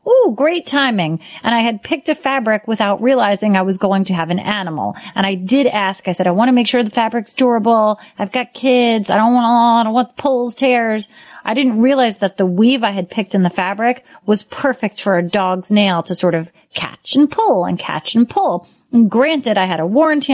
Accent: American